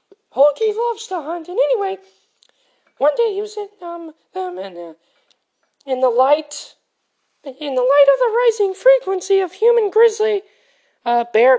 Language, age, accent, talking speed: English, 20-39, American, 145 wpm